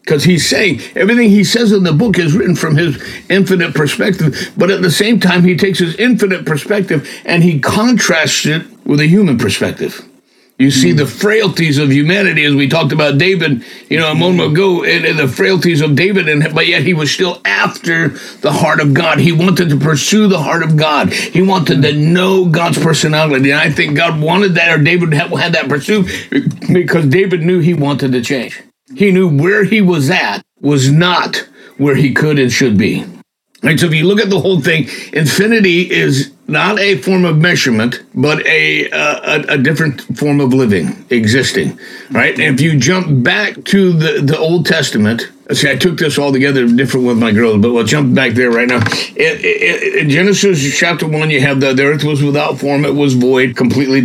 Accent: American